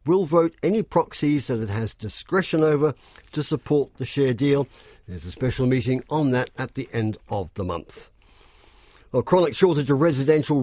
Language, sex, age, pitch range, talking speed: English, male, 50-69, 120-155 Hz, 175 wpm